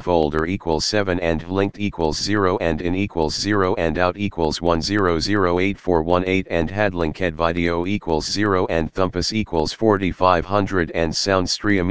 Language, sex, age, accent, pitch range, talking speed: English, male, 40-59, American, 80-100 Hz, 135 wpm